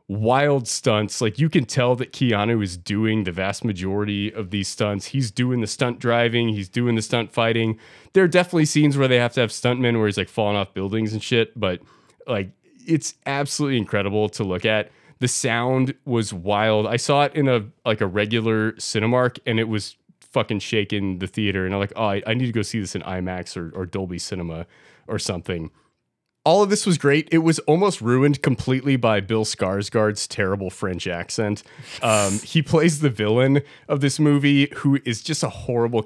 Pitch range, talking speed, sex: 100-135 Hz, 200 wpm, male